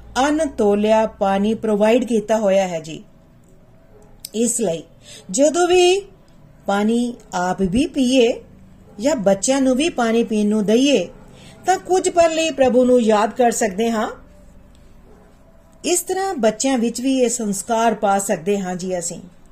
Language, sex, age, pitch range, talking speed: Punjabi, female, 40-59, 205-260 Hz, 140 wpm